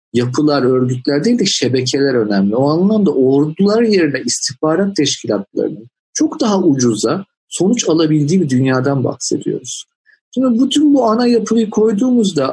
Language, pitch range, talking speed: Turkish, 130-190 Hz, 125 wpm